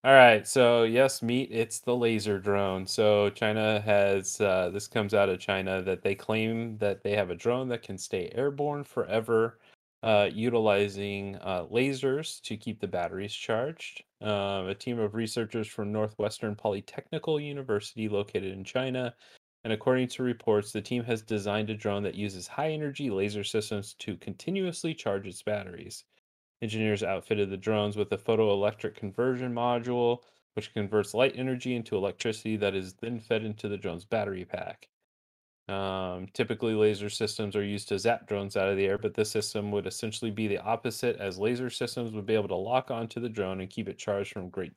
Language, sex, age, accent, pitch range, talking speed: English, male, 30-49, American, 100-120 Hz, 180 wpm